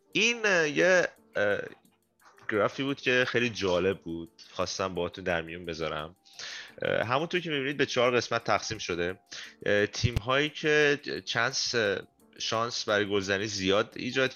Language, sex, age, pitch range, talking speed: Persian, male, 30-49, 100-135 Hz, 120 wpm